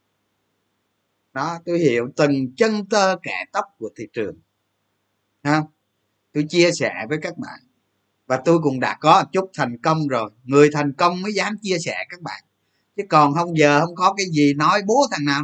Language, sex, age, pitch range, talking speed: Vietnamese, male, 20-39, 105-150 Hz, 190 wpm